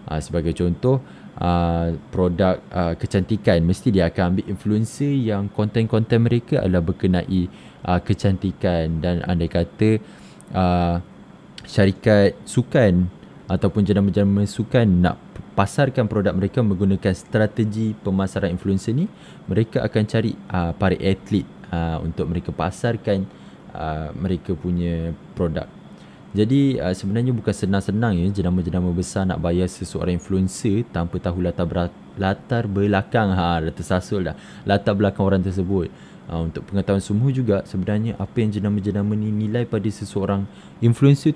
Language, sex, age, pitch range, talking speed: Malay, male, 20-39, 90-110 Hz, 130 wpm